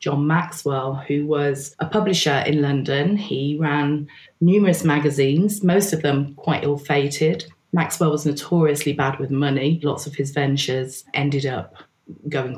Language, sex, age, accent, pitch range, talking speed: English, female, 20-39, British, 135-160 Hz, 145 wpm